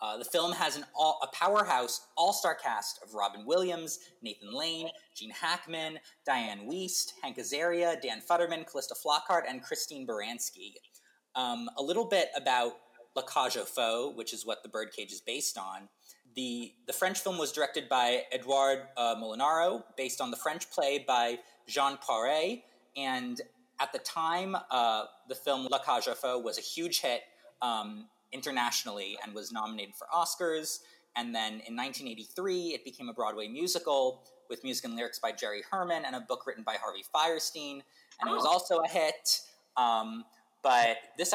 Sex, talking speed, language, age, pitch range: male, 170 wpm, English, 20-39, 120-190 Hz